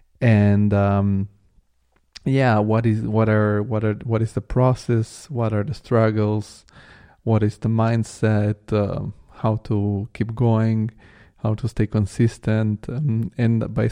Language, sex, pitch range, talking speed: English, male, 105-115 Hz, 140 wpm